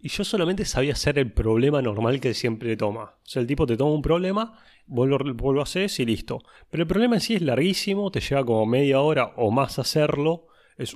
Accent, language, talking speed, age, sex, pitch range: Argentinian, Spanish, 220 wpm, 30-49, male, 115-160 Hz